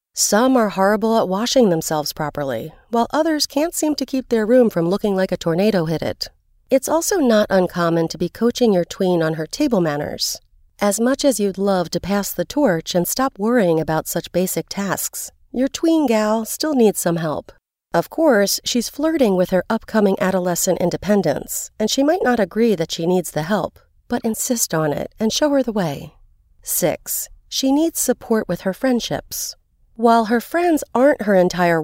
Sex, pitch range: female, 175-245 Hz